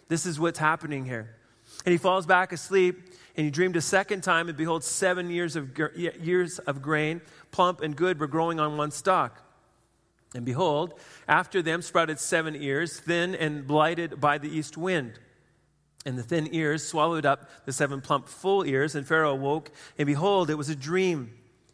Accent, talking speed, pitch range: American, 180 wpm, 130-155 Hz